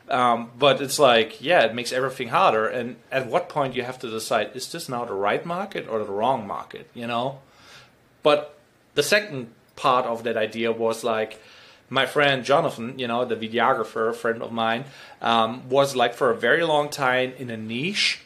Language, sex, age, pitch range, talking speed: English, male, 30-49, 115-145 Hz, 195 wpm